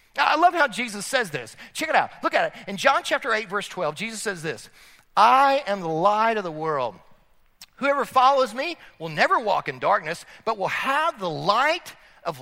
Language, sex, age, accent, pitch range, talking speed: English, male, 40-59, American, 210-340 Hz, 205 wpm